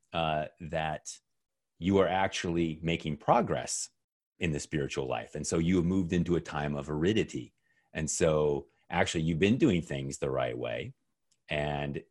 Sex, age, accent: male, 30-49, American